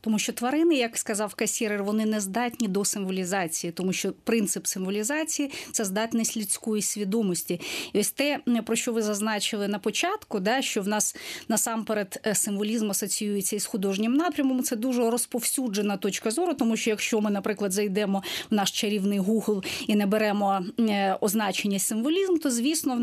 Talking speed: 160 wpm